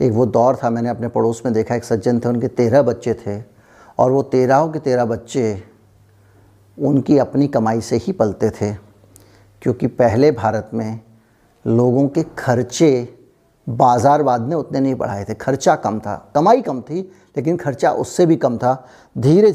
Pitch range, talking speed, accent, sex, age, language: 120-150 Hz, 170 wpm, native, male, 50-69, Hindi